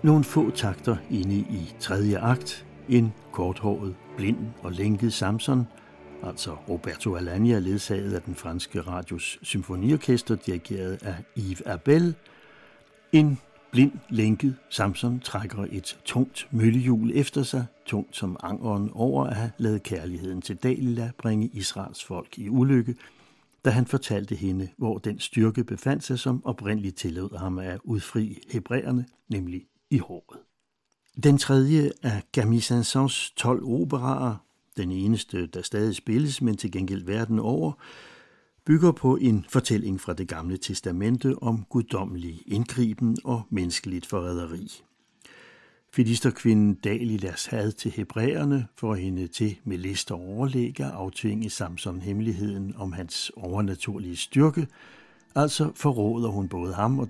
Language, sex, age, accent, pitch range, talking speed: Danish, male, 60-79, native, 95-125 Hz, 135 wpm